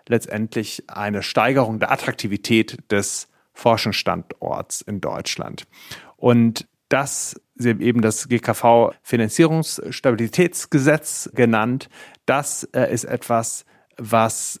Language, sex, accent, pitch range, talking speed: German, male, German, 110-125 Hz, 90 wpm